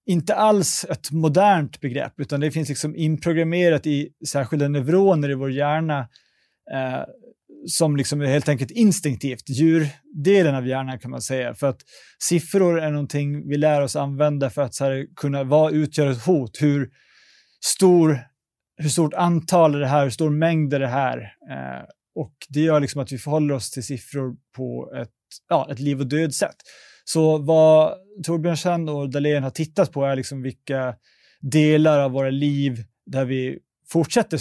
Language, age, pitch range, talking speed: Swedish, 30-49, 135-155 Hz, 170 wpm